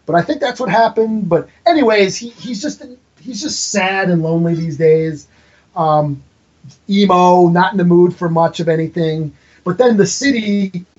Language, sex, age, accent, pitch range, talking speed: English, male, 30-49, American, 140-185 Hz, 175 wpm